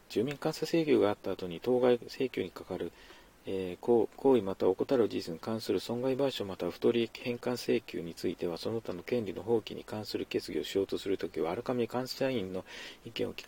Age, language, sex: 40-59, Japanese, male